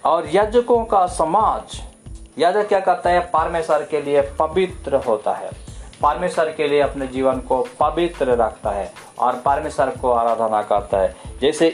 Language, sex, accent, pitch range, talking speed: Hindi, male, native, 125-185 Hz, 150 wpm